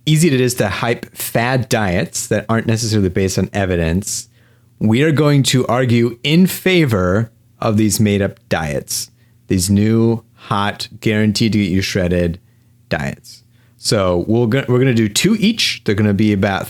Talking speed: 150 wpm